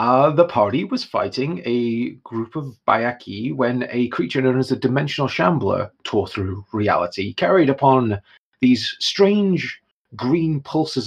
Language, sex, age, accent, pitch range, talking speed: English, male, 30-49, British, 100-160 Hz, 140 wpm